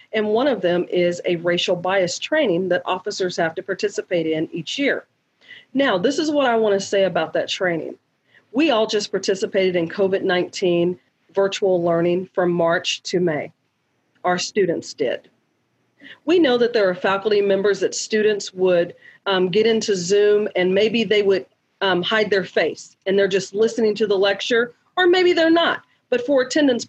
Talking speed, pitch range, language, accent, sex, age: 175 wpm, 190-245 Hz, English, American, female, 40-59